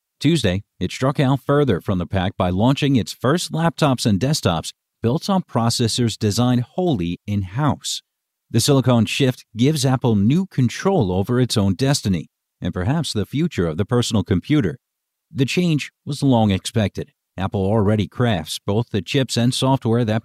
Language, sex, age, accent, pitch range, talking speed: English, male, 50-69, American, 100-135 Hz, 160 wpm